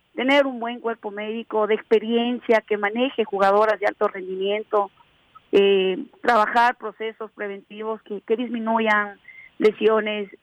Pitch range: 205-235 Hz